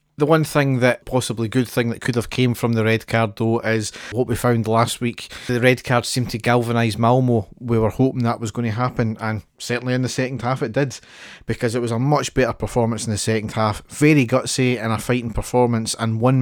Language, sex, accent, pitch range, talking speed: English, male, British, 110-125 Hz, 235 wpm